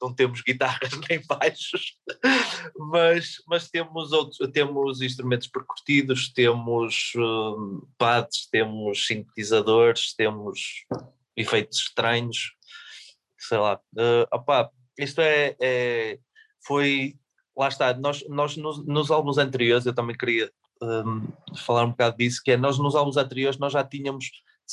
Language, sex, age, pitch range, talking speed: Portuguese, male, 20-39, 125-145 Hz, 130 wpm